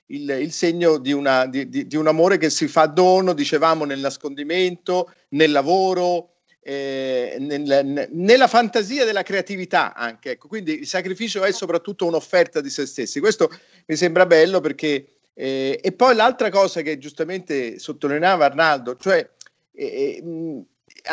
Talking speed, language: 150 wpm, Italian